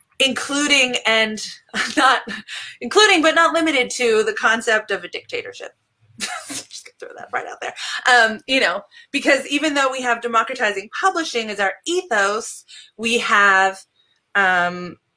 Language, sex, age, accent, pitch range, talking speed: English, female, 20-39, American, 195-265 Hz, 140 wpm